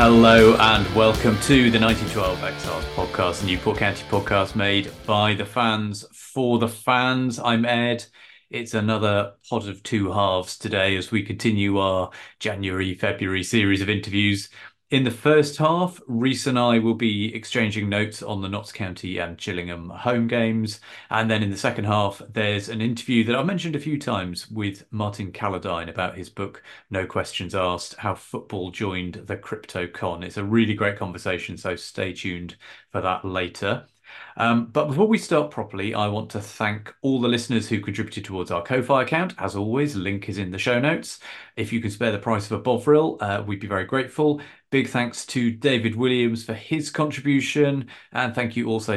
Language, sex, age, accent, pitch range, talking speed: English, male, 30-49, British, 100-120 Hz, 185 wpm